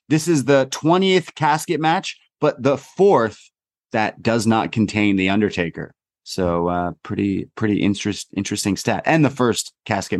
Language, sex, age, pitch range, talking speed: English, male, 30-49, 110-150 Hz, 155 wpm